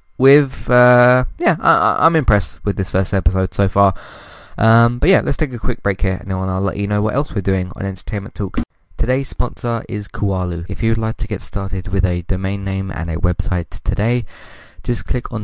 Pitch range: 90-110 Hz